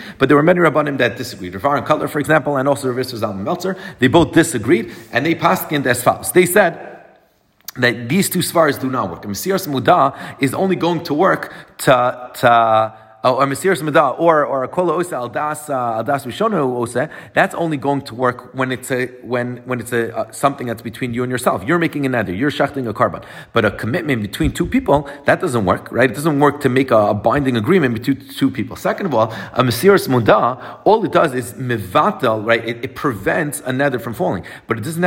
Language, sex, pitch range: English, male, 120-155 Hz